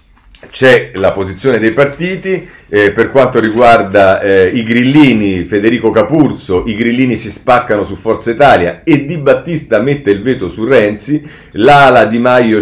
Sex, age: male, 40-59